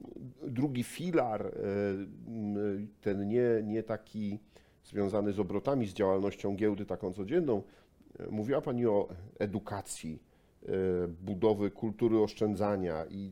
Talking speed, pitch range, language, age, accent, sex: 100 wpm, 100-115 Hz, Polish, 50-69, native, male